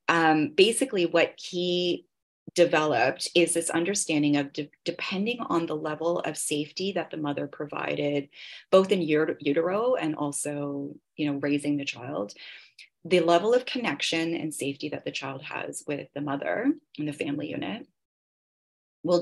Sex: female